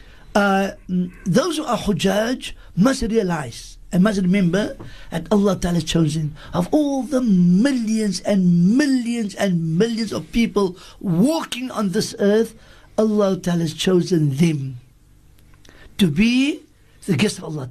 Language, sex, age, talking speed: English, male, 60-79, 135 wpm